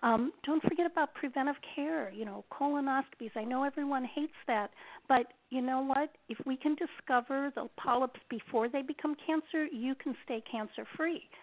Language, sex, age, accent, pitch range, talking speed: English, female, 50-69, American, 220-280 Hz, 170 wpm